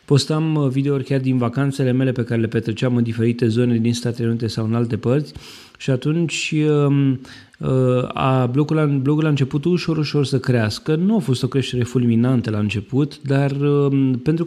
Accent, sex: native, male